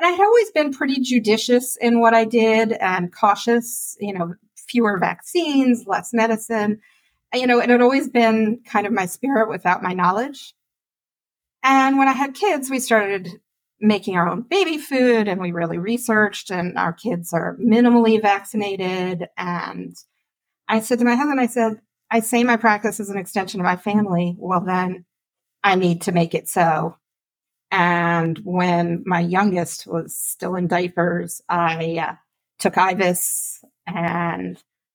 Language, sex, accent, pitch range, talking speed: English, female, American, 175-230 Hz, 160 wpm